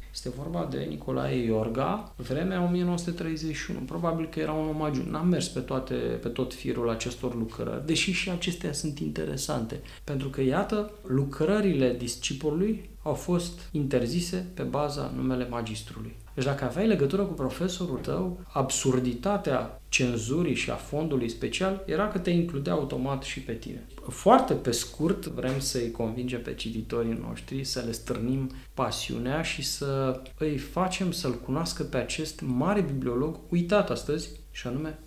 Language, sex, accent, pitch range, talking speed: English, male, Romanian, 120-165 Hz, 145 wpm